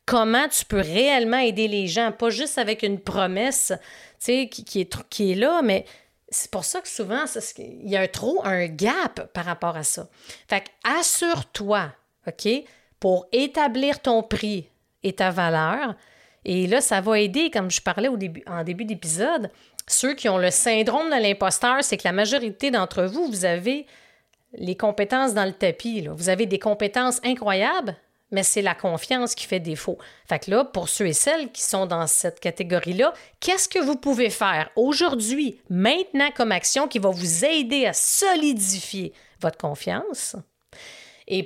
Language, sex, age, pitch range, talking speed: French, female, 30-49, 185-255 Hz, 180 wpm